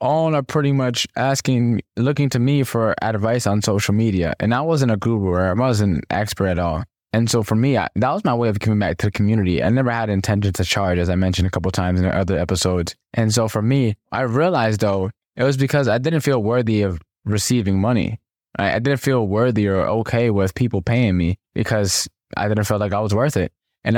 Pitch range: 100-130 Hz